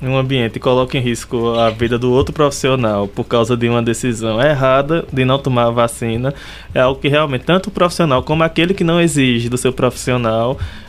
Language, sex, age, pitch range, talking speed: Portuguese, male, 20-39, 125-150 Hz, 205 wpm